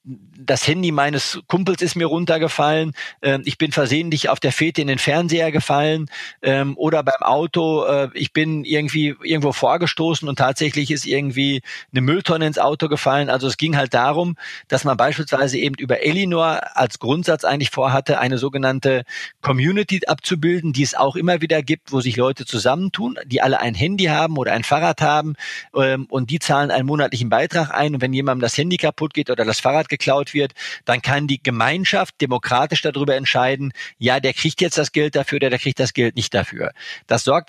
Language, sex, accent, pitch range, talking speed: German, male, German, 130-155 Hz, 185 wpm